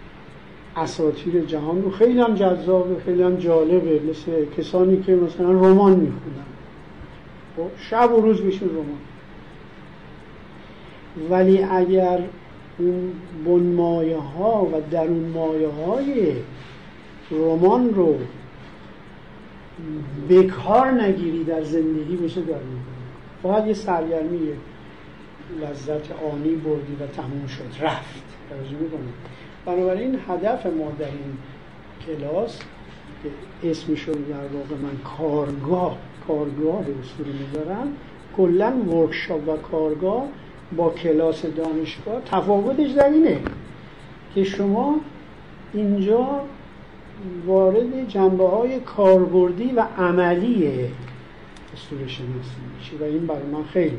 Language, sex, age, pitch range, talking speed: Persian, male, 50-69, 150-185 Hz, 95 wpm